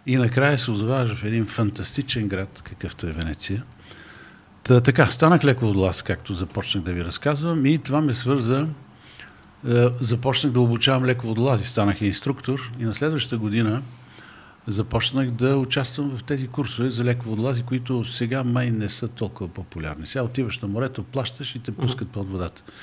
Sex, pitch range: male, 105-135 Hz